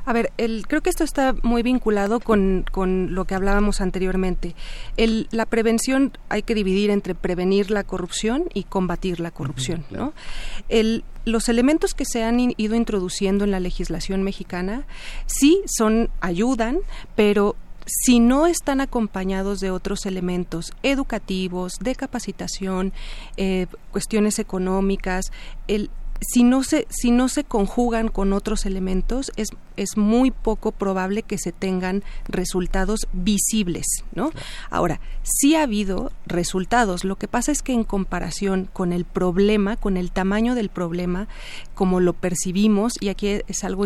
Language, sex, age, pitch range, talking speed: Spanish, female, 30-49, 185-230 Hz, 150 wpm